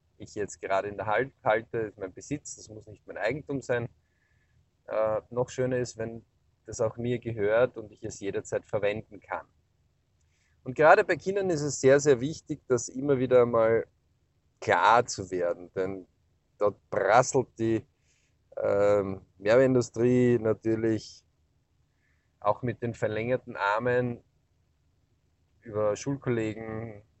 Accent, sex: German, male